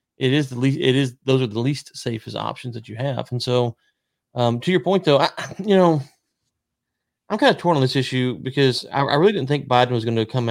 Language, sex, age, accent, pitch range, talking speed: English, male, 30-49, American, 115-140 Hz, 245 wpm